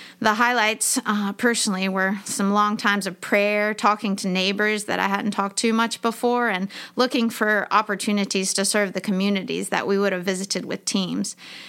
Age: 30-49